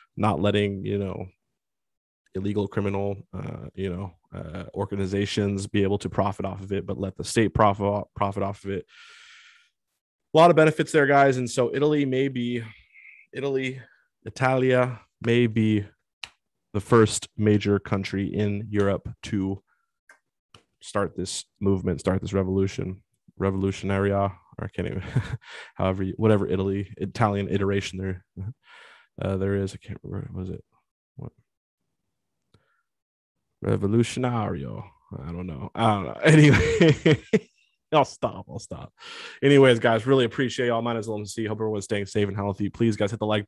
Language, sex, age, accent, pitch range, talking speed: English, male, 20-39, American, 100-115 Hz, 150 wpm